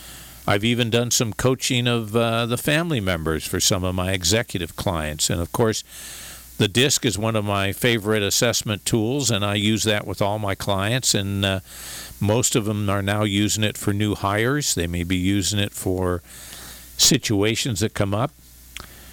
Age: 50-69